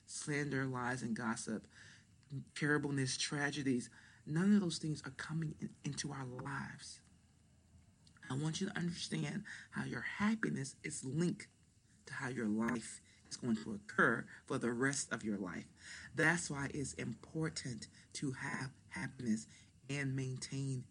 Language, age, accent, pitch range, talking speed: English, 40-59, American, 110-145 Hz, 140 wpm